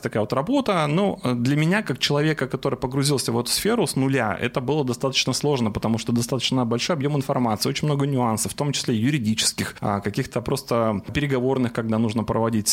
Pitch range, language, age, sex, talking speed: 120-145 Hz, Russian, 30-49, male, 180 wpm